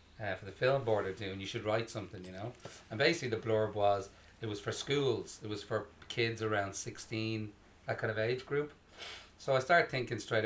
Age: 30-49